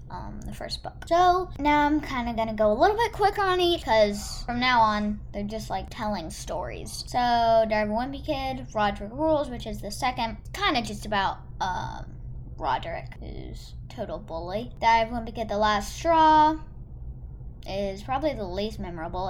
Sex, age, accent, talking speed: female, 10-29, American, 180 wpm